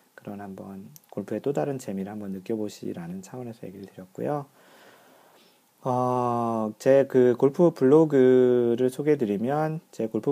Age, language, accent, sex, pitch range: 40-59, Korean, native, male, 105-140 Hz